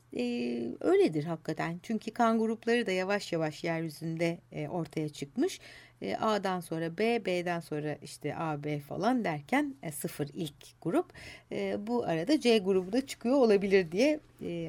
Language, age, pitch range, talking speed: Turkish, 60-79, 165-240 Hz, 155 wpm